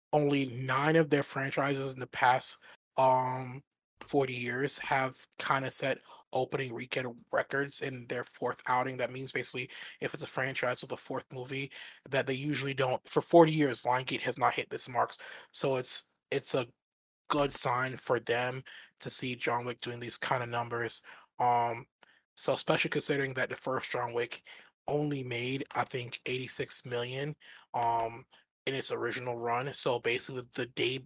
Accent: American